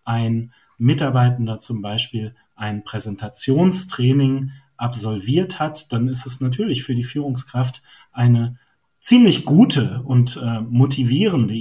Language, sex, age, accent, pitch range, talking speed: German, male, 40-59, German, 120-145 Hz, 110 wpm